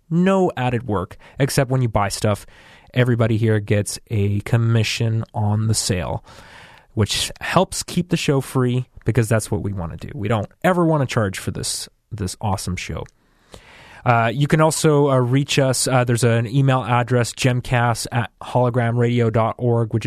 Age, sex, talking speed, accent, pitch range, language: 20-39, male, 165 wpm, American, 110-140 Hz, English